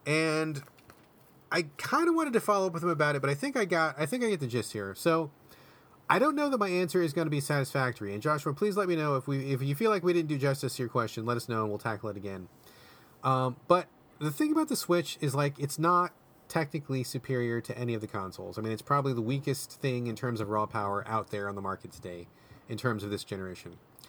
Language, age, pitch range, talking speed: English, 30-49, 115-155 Hz, 260 wpm